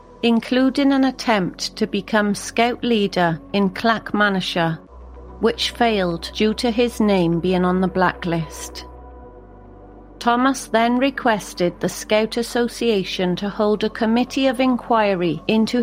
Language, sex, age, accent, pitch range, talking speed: English, female, 40-59, British, 175-235 Hz, 120 wpm